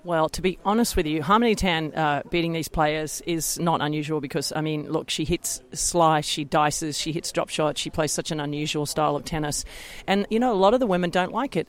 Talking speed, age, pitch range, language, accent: 240 wpm, 40-59, 155-185 Hz, English, Australian